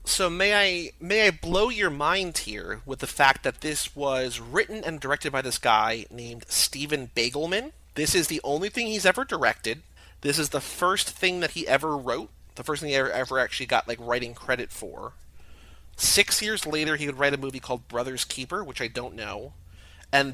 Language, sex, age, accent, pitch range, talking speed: English, male, 30-49, American, 120-155 Hz, 205 wpm